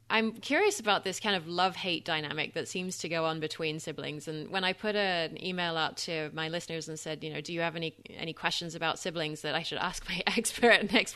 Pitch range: 160-195 Hz